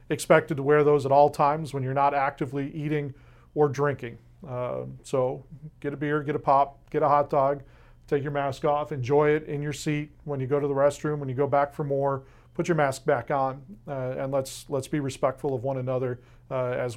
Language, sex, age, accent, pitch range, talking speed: English, male, 40-59, American, 130-150 Hz, 225 wpm